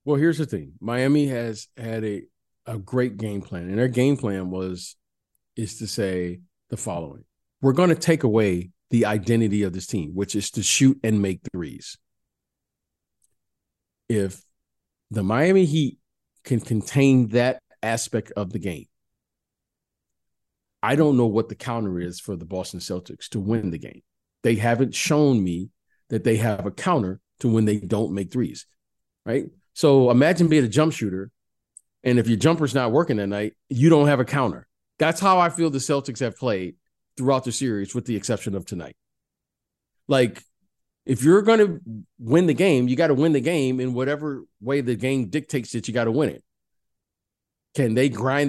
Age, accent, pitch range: 50-69, American, 100-140 Hz